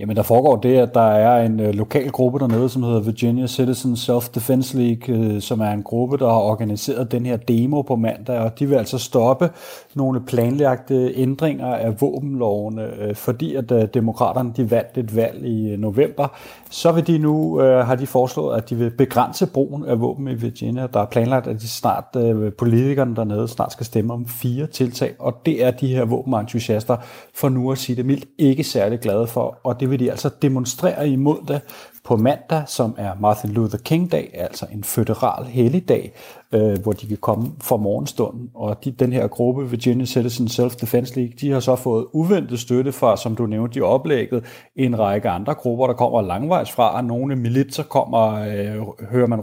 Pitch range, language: 110-130 Hz, Danish